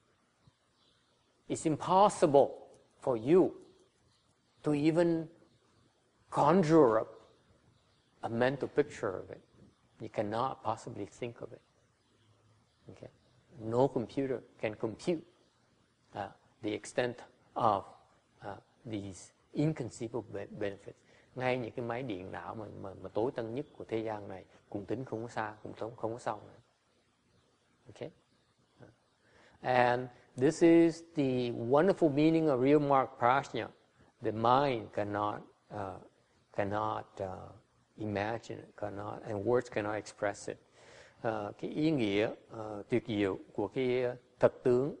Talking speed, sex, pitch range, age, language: 120 wpm, male, 110-155 Hz, 50-69, English